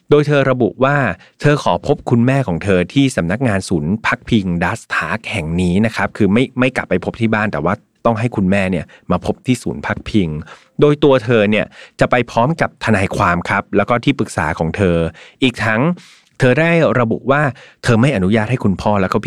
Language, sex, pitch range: Thai, male, 95-125 Hz